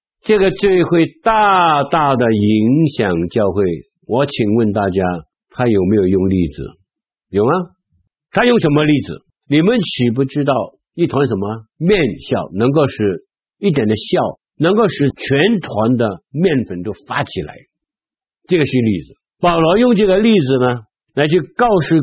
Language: Chinese